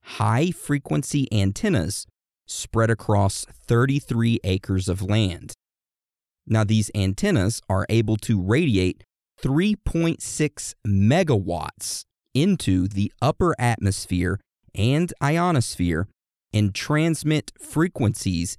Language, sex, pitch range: English, male, 100-125 Hz